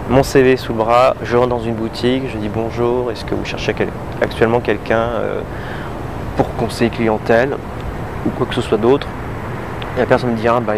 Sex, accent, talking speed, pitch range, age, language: male, French, 190 wpm, 110-130 Hz, 20-39, French